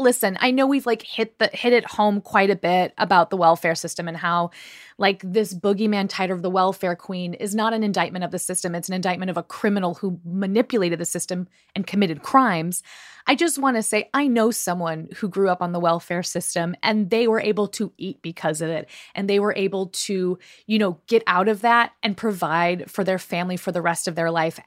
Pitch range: 175-220 Hz